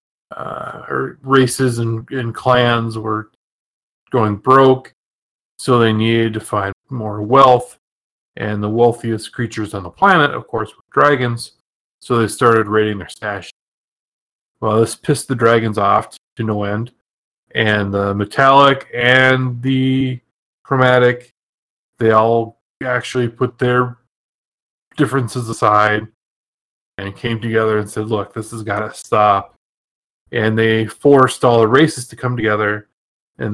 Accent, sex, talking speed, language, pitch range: American, male, 135 wpm, English, 110-130 Hz